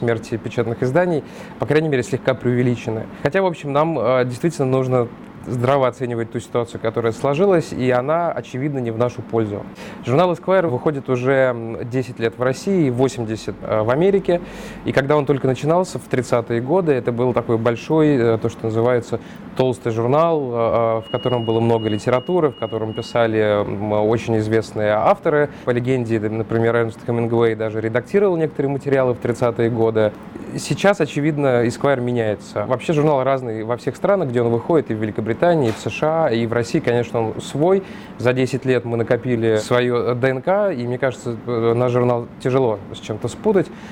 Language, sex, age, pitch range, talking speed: Russian, male, 20-39, 115-145 Hz, 165 wpm